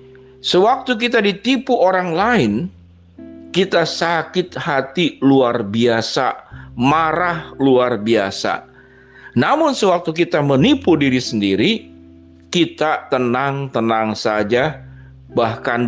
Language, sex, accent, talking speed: Indonesian, male, native, 85 wpm